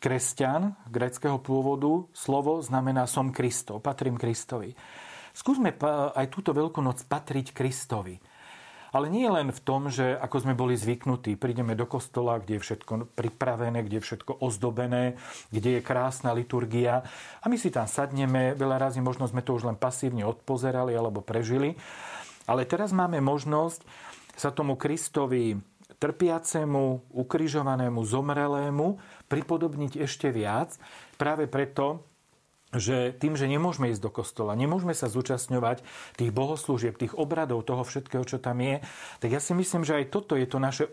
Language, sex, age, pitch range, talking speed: Slovak, male, 40-59, 125-150 Hz, 150 wpm